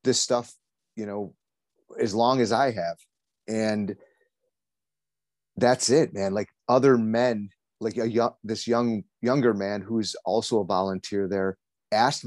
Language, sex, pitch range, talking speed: English, male, 105-130 Hz, 140 wpm